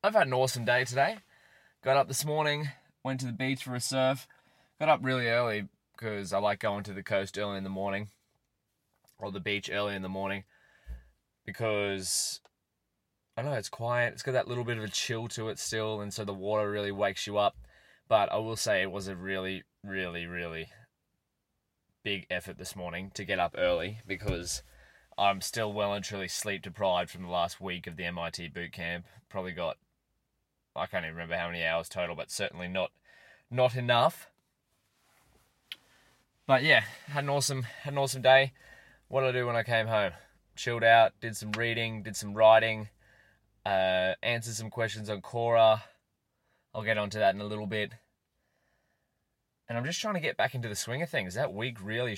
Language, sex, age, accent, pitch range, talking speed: English, male, 20-39, Australian, 95-120 Hz, 190 wpm